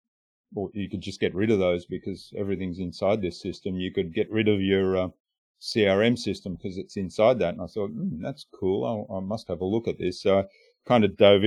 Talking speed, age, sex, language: 235 wpm, 40-59, male, English